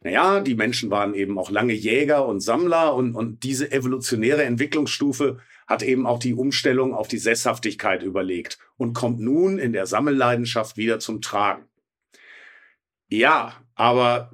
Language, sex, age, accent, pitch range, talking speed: German, male, 50-69, German, 120-165 Hz, 145 wpm